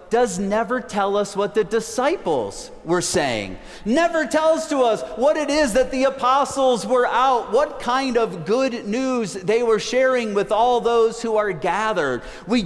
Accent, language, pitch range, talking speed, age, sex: American, English, 200-255 Hz, 170 wpm, 40-59, male